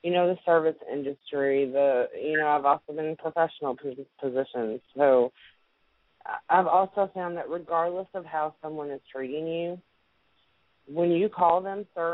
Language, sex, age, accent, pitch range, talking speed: English, female, 30-49, American, 150-190 Hz, 155 wpm